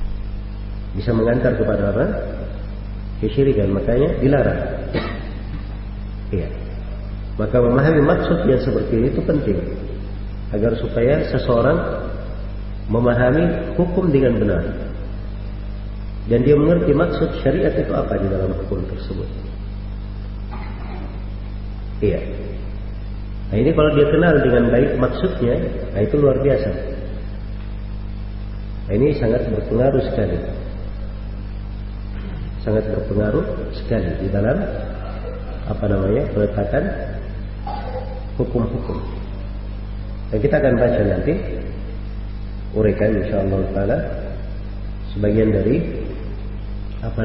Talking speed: 95 wpm